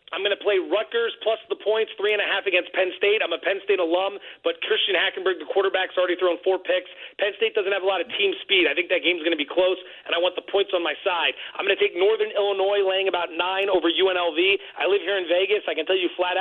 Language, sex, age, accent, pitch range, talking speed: English, male, 30-49, American, 180-225 Hz, 270 wpm